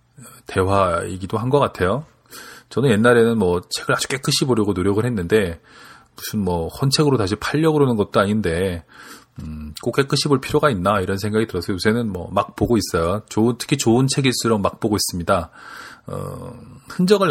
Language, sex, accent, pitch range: Korean, male, native, 95-130 Hz